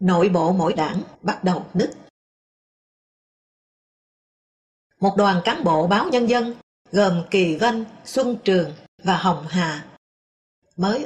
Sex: female